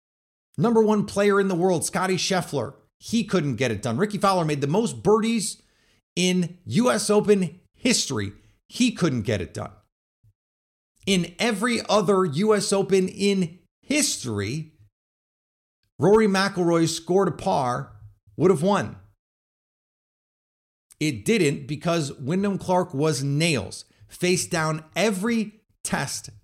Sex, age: male, 30-49